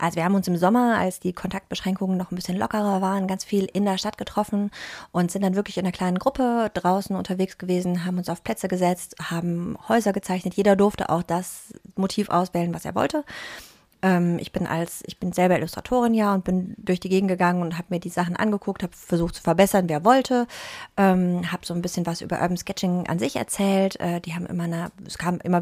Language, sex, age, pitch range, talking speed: German, female, 30-49, 175-200 Hz, 215 wpm